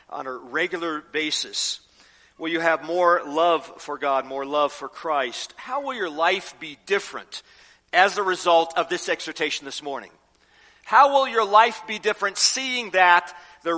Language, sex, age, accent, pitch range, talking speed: English, male, 50-69, American, 175-235 Hz, 165 wpm